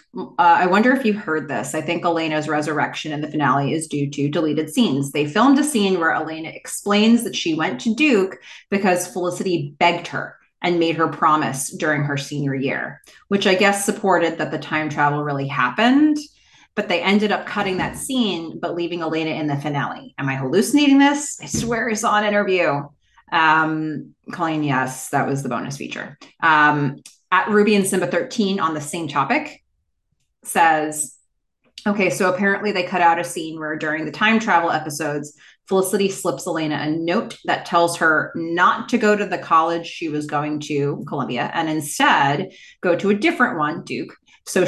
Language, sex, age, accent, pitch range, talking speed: English, female, 30-49, American, 150-200 Hz, 185 wpm